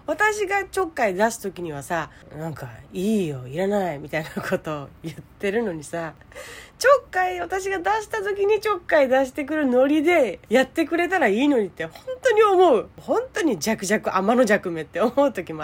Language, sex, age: Japanese, female, 30-49